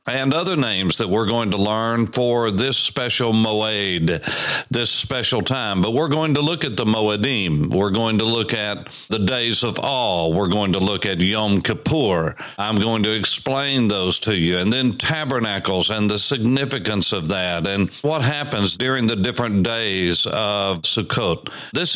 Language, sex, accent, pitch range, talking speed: English, male, American, 100-125 Hz, 175 wpm